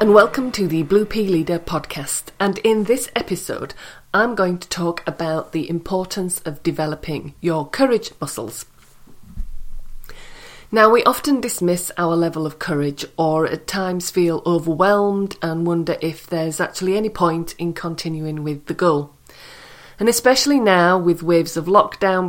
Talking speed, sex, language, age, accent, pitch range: 150 wpm, female, English, 40-59, British, 165-205 Hz